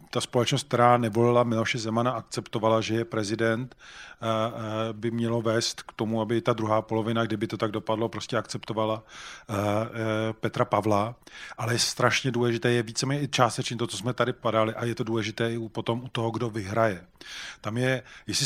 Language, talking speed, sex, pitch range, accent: Czech, 170 wpm, male, 110-125 Hz, native